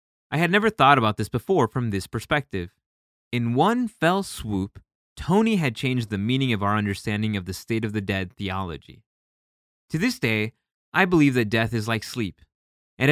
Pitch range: 110-155 Hz